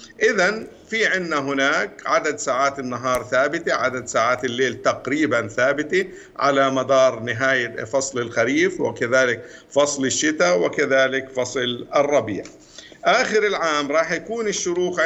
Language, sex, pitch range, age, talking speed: Arabic, male, 120-145 Hz, 50-69, 115 wpm